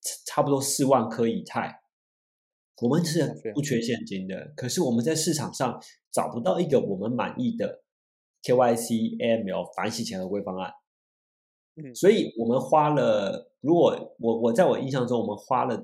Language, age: Chinese, 30-49